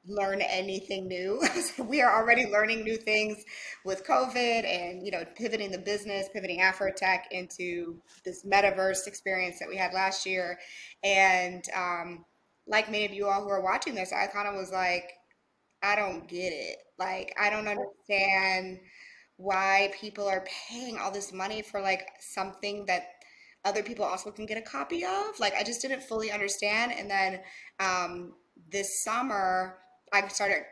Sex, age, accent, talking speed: female, 20-39, American, 165 wpm